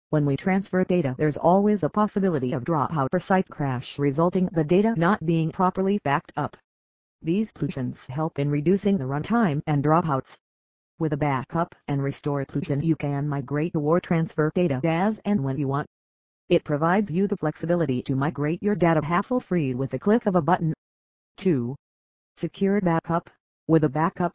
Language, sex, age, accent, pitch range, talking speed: English, female, 40-59, American, 140-180 Hz, 170 wpm